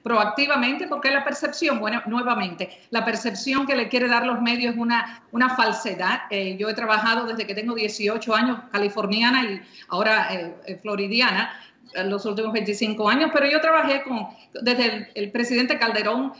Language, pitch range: Spanish, 215-270 Hz